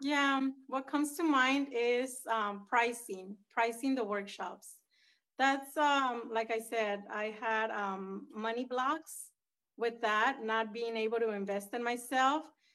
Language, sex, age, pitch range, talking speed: English, female, 30-49, 220-270 Hz, 140 wpm